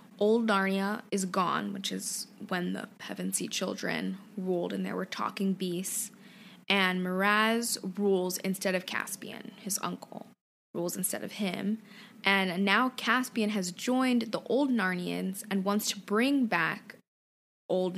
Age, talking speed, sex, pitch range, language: 20-39, 140 wpm, female, 190-220 Hz, English